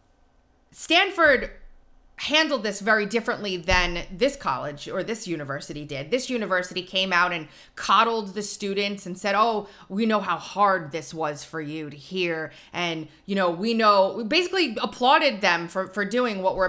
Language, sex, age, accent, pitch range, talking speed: English, female, 30-49, American, 175-240 Hz, 160 wpm